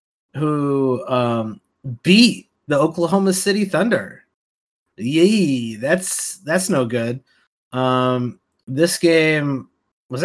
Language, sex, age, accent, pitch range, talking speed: English, male, 30-49, American, 125-170 Hz, 95 wpm